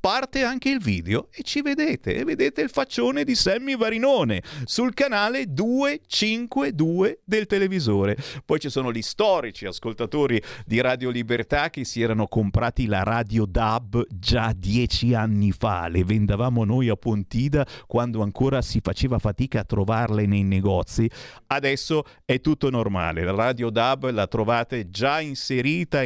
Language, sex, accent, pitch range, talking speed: Italian, male, native, 105-160 Hz, 145 wpm